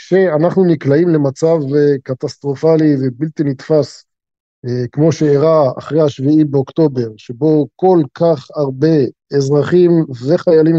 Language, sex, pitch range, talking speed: Hebrew, male, 140-170 Hz, 95 wpm